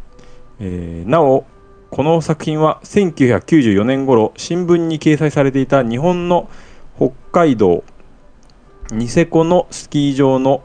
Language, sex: Japanese, male